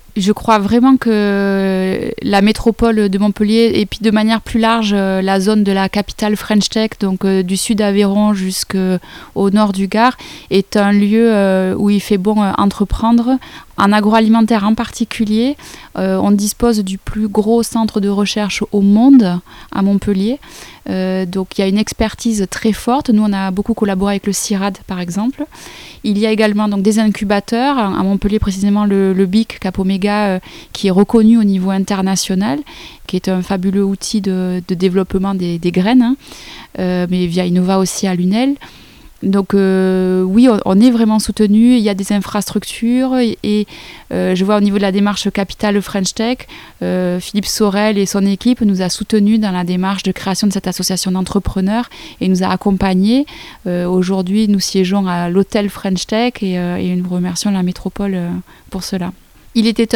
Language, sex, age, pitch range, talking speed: French, female, 20-39, 190-220 Hz, 180 wpm